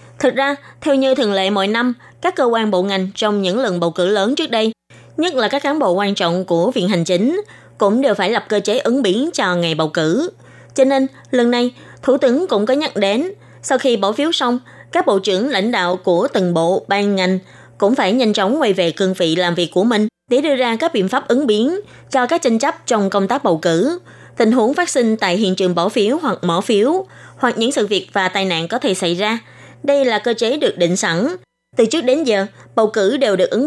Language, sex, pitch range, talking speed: Vietnamese, female, 185-265 Hz, 245 wpm